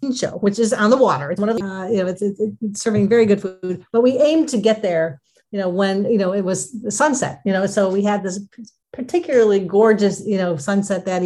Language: English